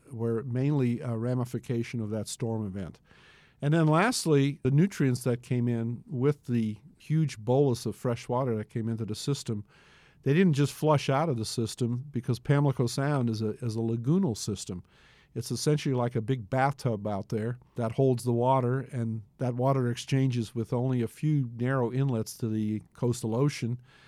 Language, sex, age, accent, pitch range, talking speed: English, male, 50-69, American, 115-140 Hz, 175 wpm